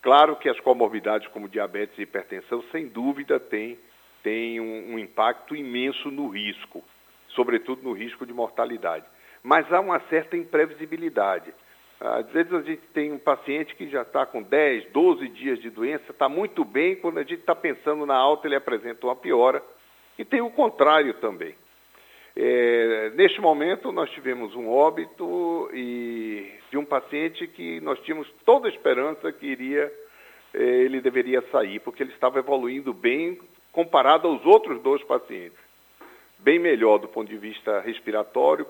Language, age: Portuguese, 60-79